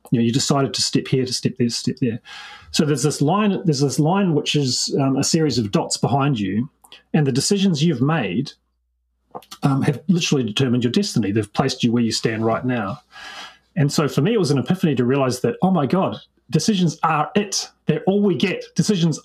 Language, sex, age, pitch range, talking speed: English, male, 30-49, 120-165 Hz, 220 wpm